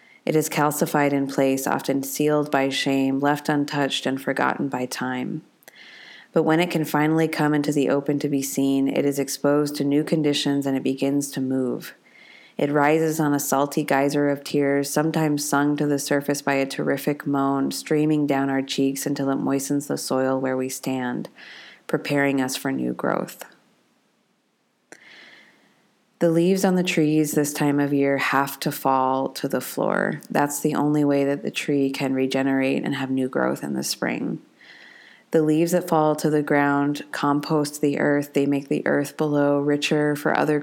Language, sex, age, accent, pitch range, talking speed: English, female, 20-39, American, 140-150 Hz, 180 wpm